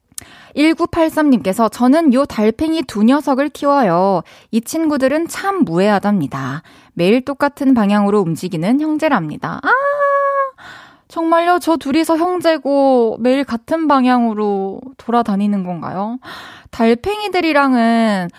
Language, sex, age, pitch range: Korean, female, 20-39, 215-315 Hz